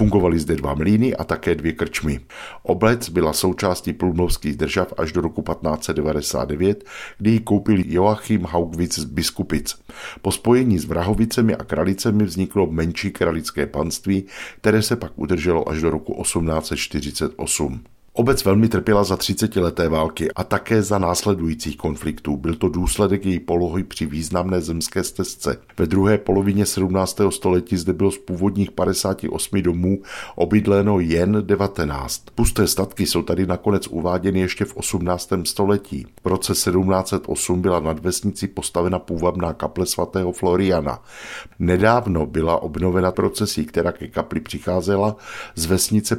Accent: native